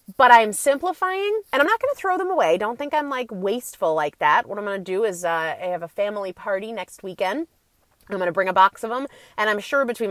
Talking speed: 260 wpm